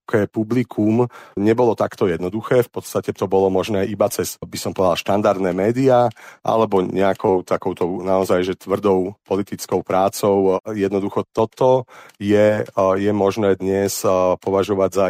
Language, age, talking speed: Slovak, 40-59, 130 wpm